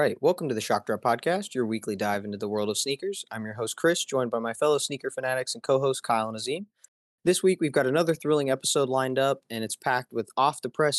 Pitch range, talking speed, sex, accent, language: 120-155 Hz, 245 wpm, male, American, English